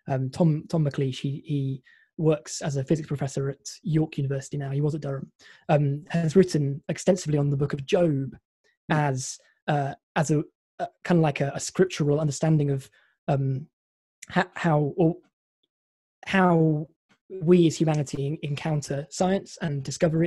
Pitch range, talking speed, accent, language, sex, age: 140-165 Hz, 155 wpm, British, English, male, 20-39